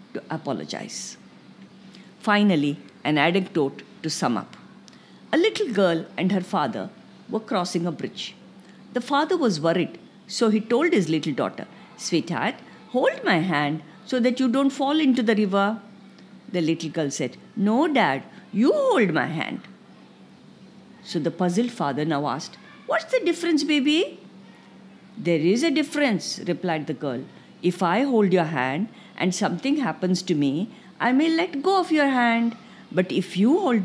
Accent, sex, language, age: Indian, female, English, 50-69